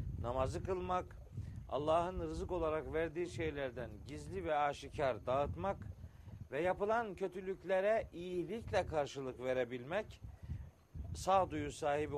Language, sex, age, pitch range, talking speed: Turkish, male, 50-69, 130-165 Hz, 95 wpm